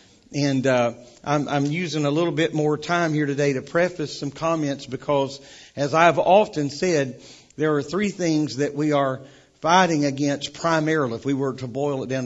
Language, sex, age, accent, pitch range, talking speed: English, male, 50-69, American, 135-160 Hz, 185 wpm